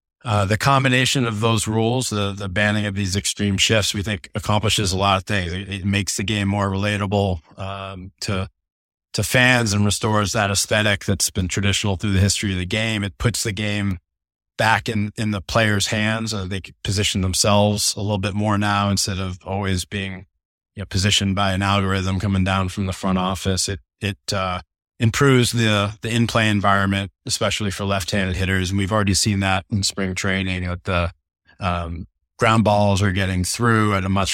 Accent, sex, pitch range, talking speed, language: American, male, 95-110 Hz, 190 wpm, English